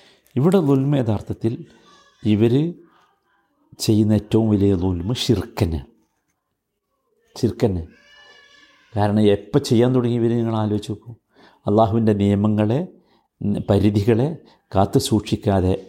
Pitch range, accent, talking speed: 95-115 Hz, native, 85 wpm